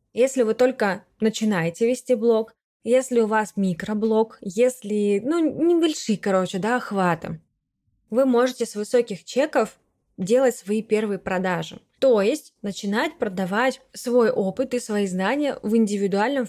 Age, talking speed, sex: 20-39, 130 wpm, female